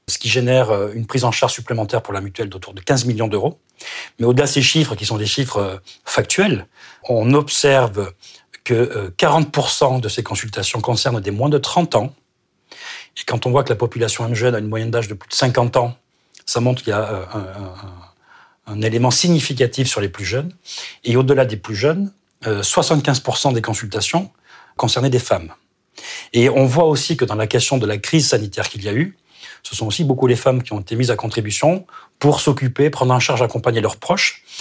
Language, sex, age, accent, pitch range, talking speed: French, male, 40-59, French, 110-140 Hz, 200 wpm